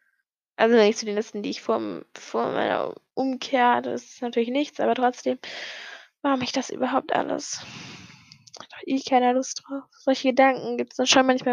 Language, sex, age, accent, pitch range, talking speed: German, female, 10-29, German, 250-285 Hz, 180 wpm